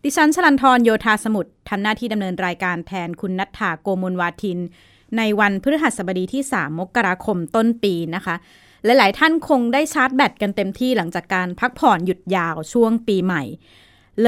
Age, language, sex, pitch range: 20-39, Thai, female, 185-235 Hz